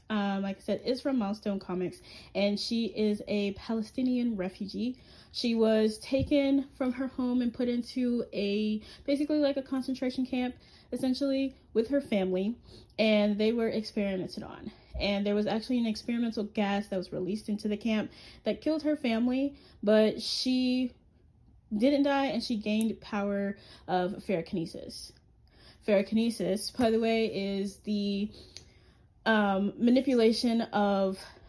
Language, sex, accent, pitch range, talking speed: English, female, American, 195-240 Hz, 140 wpm